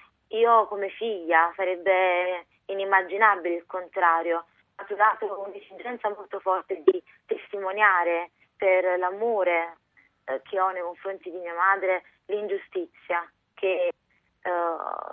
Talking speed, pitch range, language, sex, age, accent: 105 wpm, 175-210 Hz, Italian, female, 20-39, native